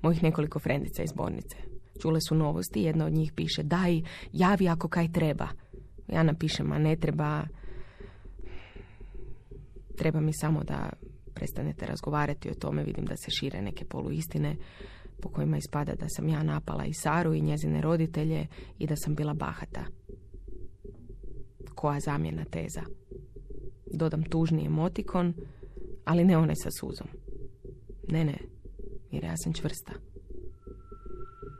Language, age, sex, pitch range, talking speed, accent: Croatian, 20-39, female, 100-160 Hz, 130 wpm, native